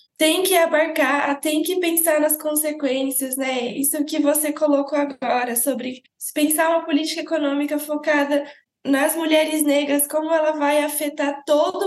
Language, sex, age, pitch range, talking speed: Portuguese, female, 10-29, 275-320 Hz, 140 wpm